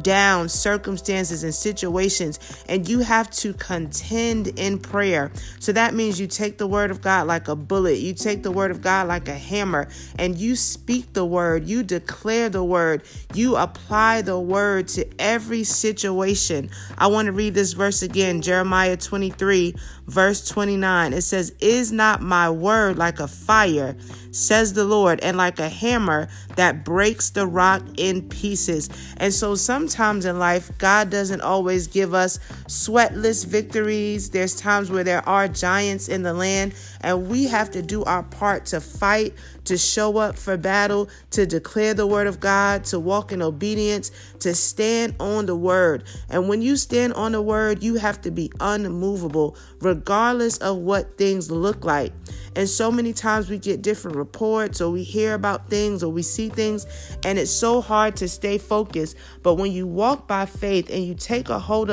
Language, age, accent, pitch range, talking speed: English, 30-49, American, 180-210 Hz, 180 wpm